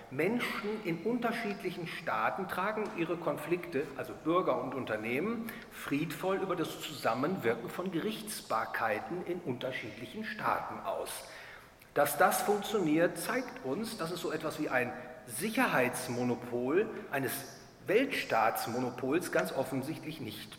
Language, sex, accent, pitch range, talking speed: English, male, German, 125-180 Hz, 110 wpm